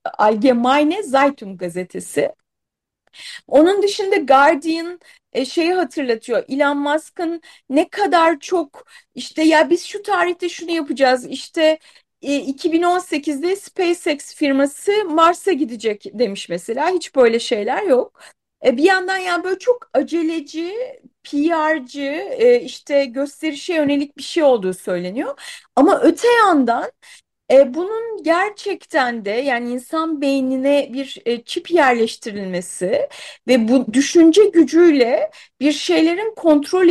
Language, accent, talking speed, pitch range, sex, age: Turkish, native, 105 wpm, 265-355 Hz, female, 30-49